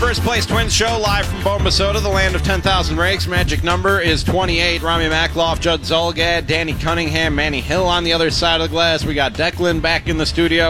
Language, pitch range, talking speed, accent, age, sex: English, 145-195 Hz, 215 wpm, American, 30-49, male